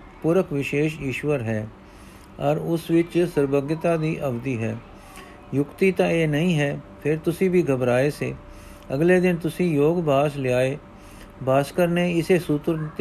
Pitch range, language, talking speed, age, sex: 135-165 Hz, Punjabi, 140 wpm, 50-69, male